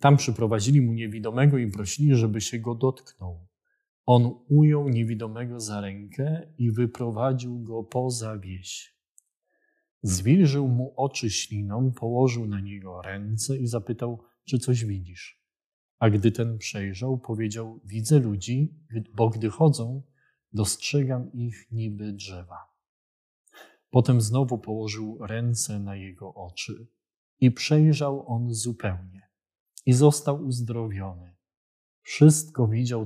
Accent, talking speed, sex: native, 115 wpm, male